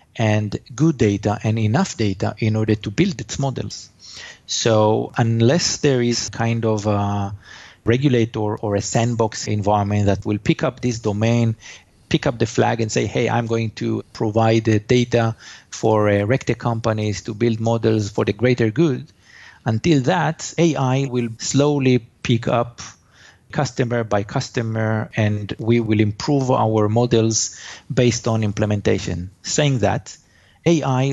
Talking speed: 145 wpm